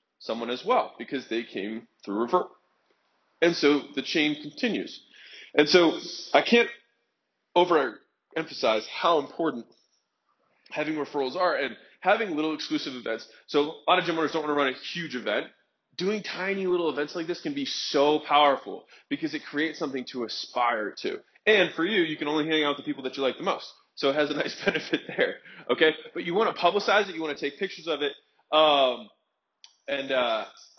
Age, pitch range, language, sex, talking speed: 20-39, 140-180 Hz, English, male, 190 wpm